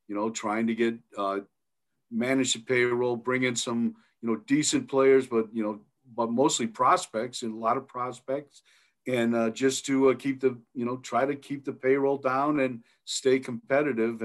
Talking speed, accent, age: 190 wpm, American, 50-69